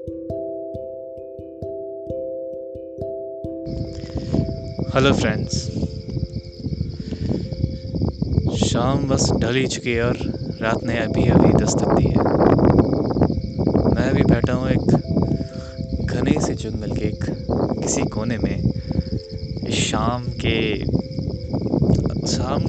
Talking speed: 80 wpm